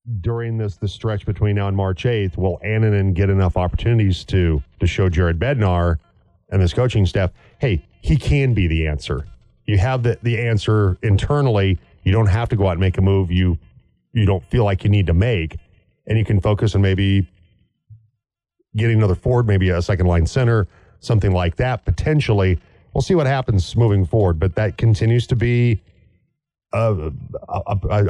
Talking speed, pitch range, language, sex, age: 180 wpm, 95-115 Hz, English, male, 40-59